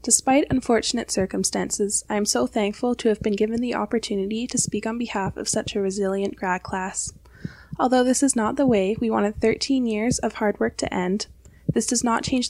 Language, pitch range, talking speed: English, 200-240 Hz, 200 wpm